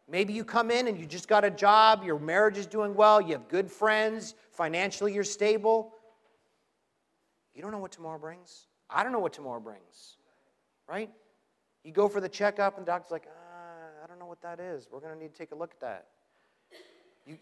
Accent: American